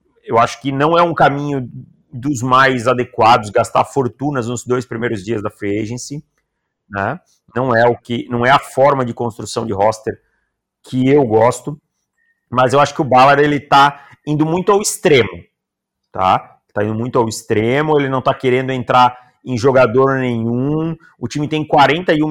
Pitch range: 120-150 Hz